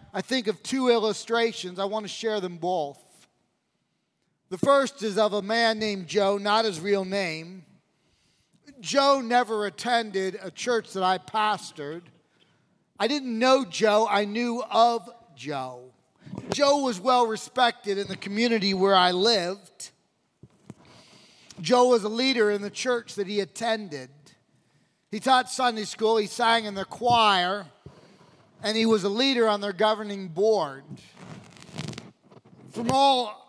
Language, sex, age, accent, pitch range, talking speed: English, male, 40-59, American, 190-235 Hz, 140 wpm